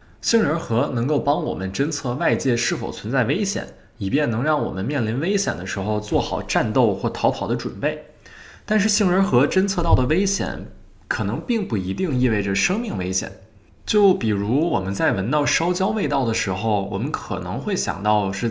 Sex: male